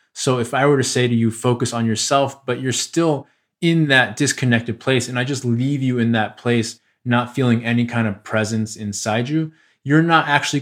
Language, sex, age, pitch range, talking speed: English, male, 20-39, 110-125 Hz, 210 wpm